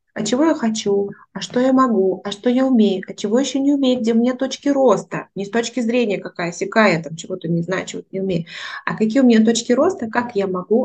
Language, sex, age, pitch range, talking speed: Russian, female, 20-39, 195-240 Hz, 240 wpm